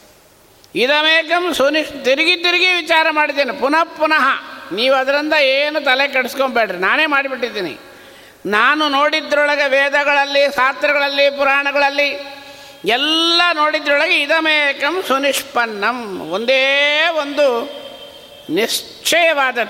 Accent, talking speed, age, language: native, 80 wpm, 60-79, Kannada